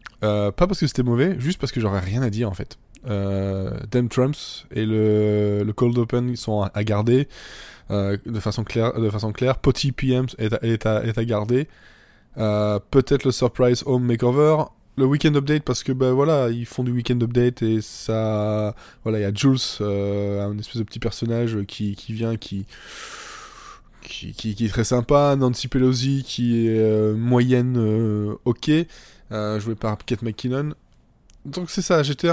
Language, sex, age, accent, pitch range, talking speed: French, male, 20-39, French, 105-130 Hz, 185 wpm